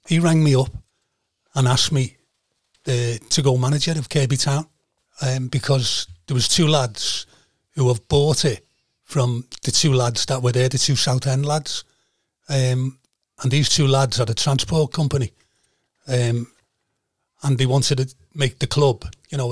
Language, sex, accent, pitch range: English, male, British, 125-145 Hz